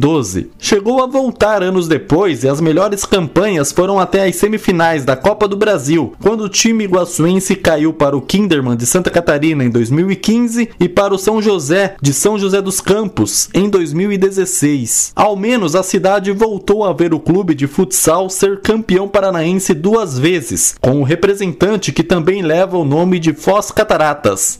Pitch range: 165-210 Hz